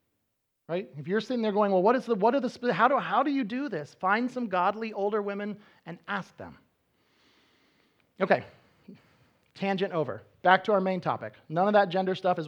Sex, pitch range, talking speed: male, 140-195 Hz, 200 wpm